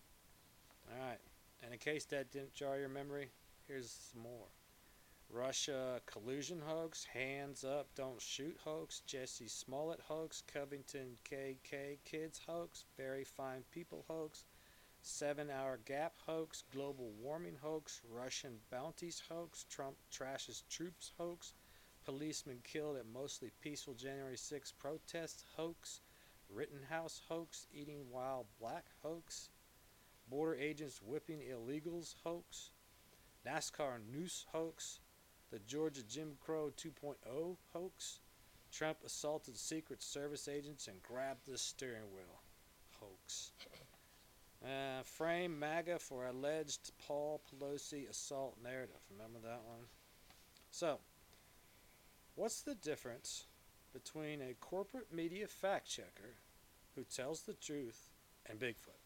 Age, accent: 40-59, American